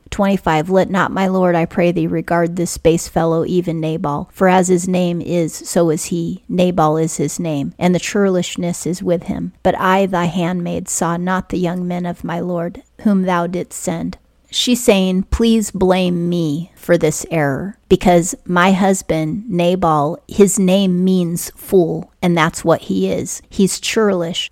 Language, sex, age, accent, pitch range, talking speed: English, female, 30-49, American, 165-185 Hz, 175 wpm